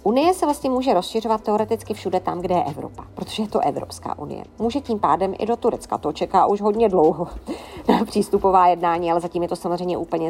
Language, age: Czech, 40-59